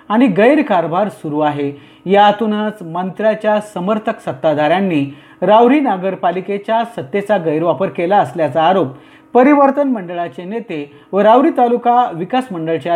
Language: Marathi